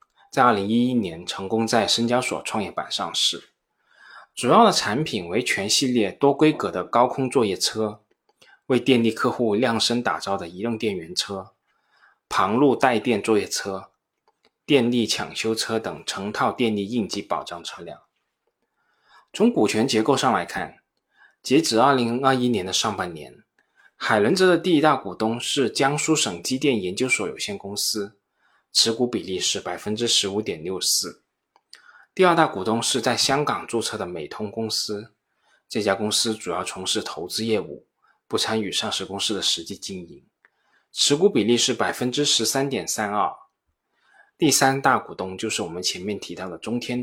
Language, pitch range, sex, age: Chinese, 105-135 Hz, male, 20-39